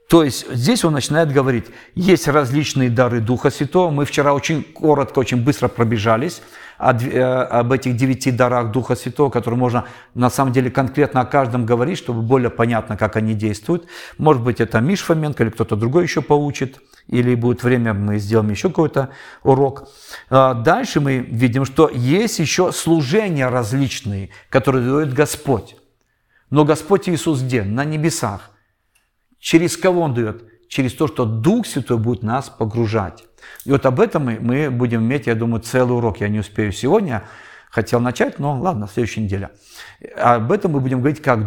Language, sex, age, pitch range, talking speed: Russian, male, 50-69, 115-145 Hz, 165 wpm